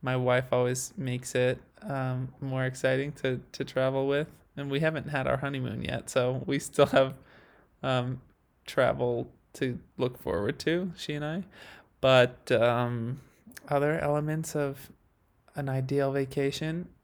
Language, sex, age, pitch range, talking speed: English, male, 20-39, 130-150 Hz, 140 wpm